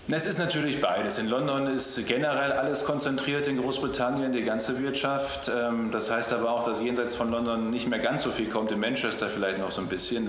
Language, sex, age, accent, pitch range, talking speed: German, male, 40-59, German, 100-120 Hz, 210 wpm